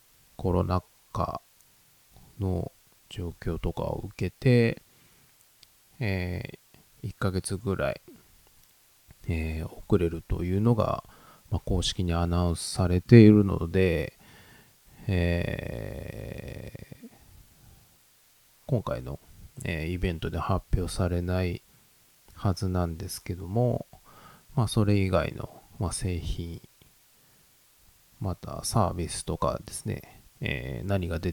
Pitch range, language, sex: 85-100 Hz, Japanese, male